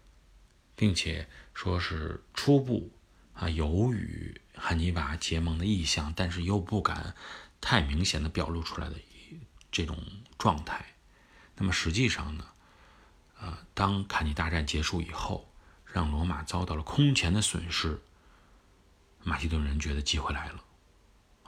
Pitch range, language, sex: 80-100 Hz, Chinese, male